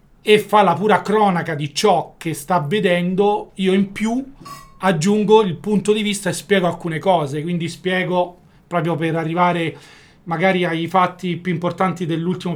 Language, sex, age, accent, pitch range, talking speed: Italian, male, 40-59, native, 160-190 Hz, 160 wpm